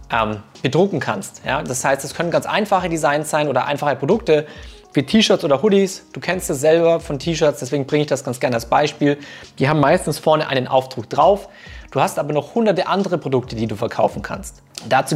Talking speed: 200 wpm